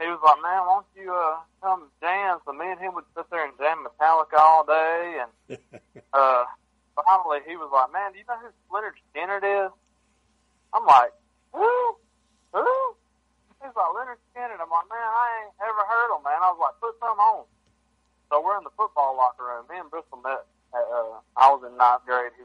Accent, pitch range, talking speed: American, 130-170 Hz, 210 wpm